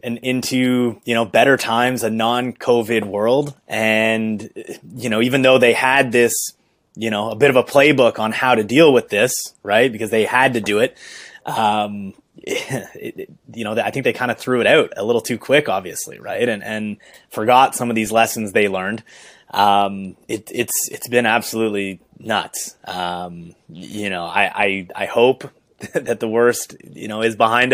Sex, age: male, 20-39